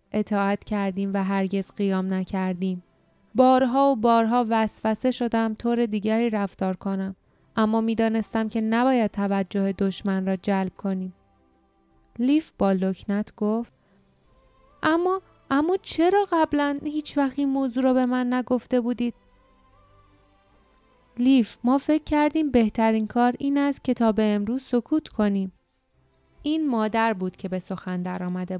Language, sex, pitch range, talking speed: Persian, female, 195-250 Hz, 120 wpm